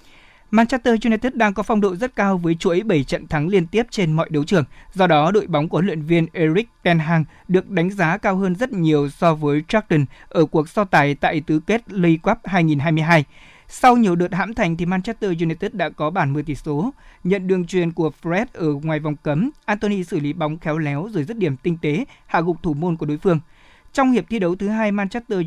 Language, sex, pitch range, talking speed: Vietnamese, male, 155-205 Hz, 230 wpm